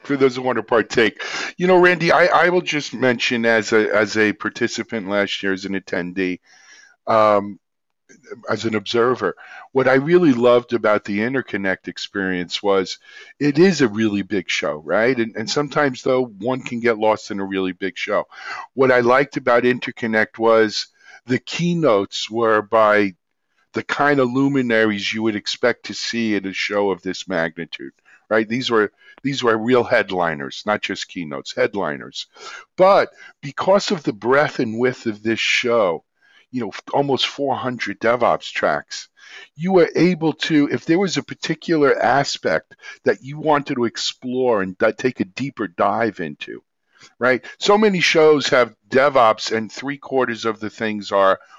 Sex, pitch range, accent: male, 100-135 Hz, American